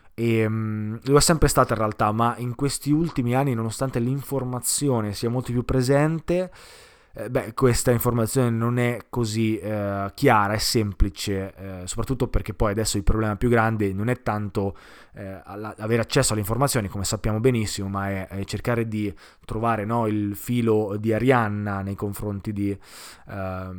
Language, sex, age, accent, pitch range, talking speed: Italian, male, 20-39, native, 105-125 Hz, 165 wpm